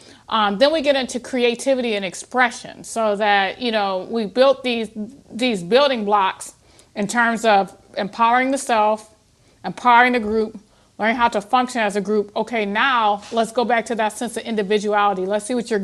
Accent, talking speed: American, 180 wpm